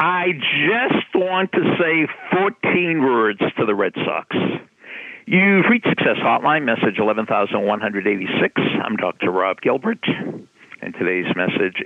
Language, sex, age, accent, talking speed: English, male, 60-79, American, 120 wpm